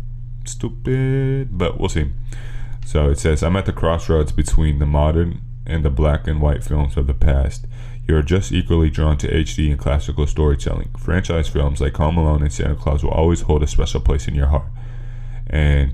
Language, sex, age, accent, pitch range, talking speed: English, male, 20-39, American, 75-105 Hz, 190 wpm